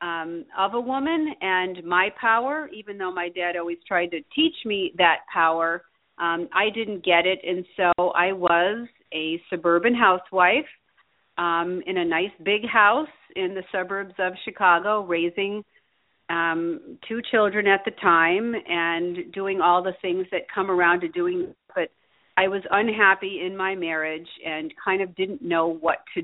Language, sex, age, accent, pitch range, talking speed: English, female, 40-59, American, 165-195 Hz, 170 wpm